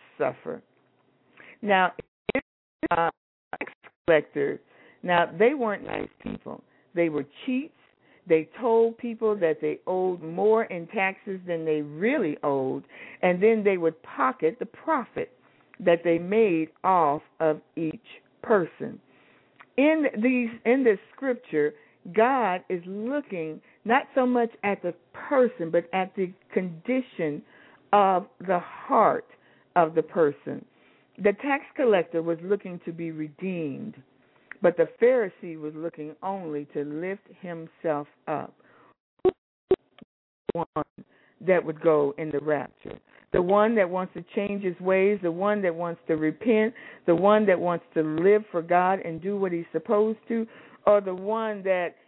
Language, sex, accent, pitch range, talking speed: English, female, American, 165-225 Hz, 140 wpm